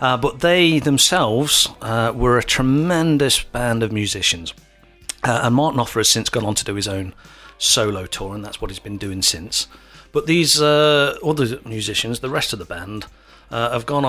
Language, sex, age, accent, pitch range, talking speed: English, male, 40-59, British, 100-130 Hz, 190 wpm